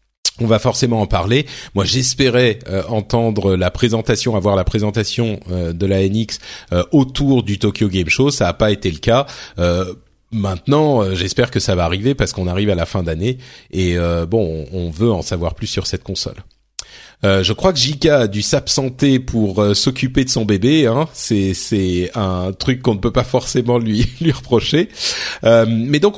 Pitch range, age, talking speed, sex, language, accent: 100-135 Hz, 40-59, 195 wpm, male, French, French